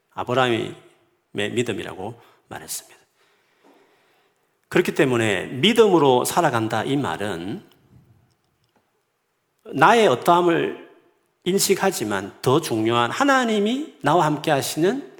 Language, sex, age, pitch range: Korean, male, 40-59, 120-190 Hz